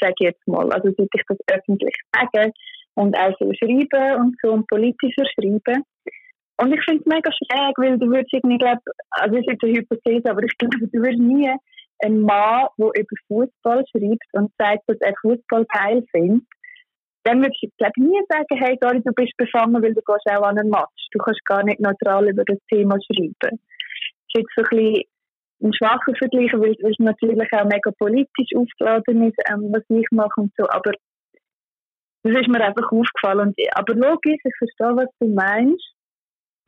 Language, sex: German, female